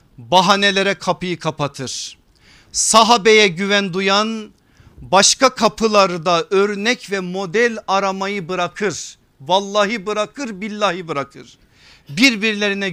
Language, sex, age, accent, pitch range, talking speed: Turkish, male, 50-69, native, 140-195 Hz, 85 wpm